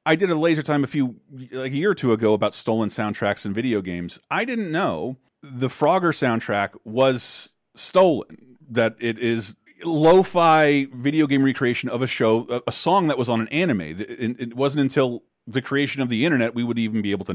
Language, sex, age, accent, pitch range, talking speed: English, male, 30-49, American, 110-135 Hz, 200 wpm